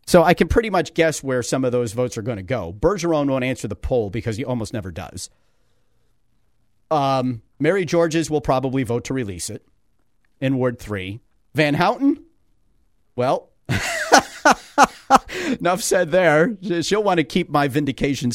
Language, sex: English, male